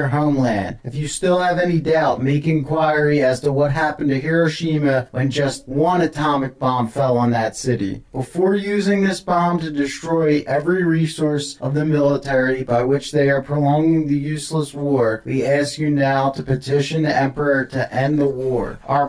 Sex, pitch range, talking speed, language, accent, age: male, 135-160 Hz, 175 wpm, English, American, 40-59